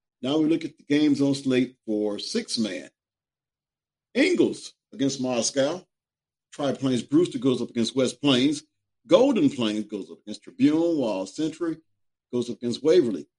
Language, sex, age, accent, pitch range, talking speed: English, male, 50-69, American, 115-170 Hz, 150 wpm